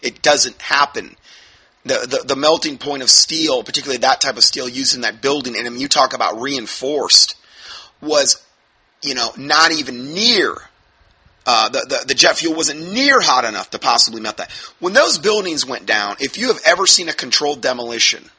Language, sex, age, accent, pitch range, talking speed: English, male, 30-49, American, 135-215 Hz, 190 wpm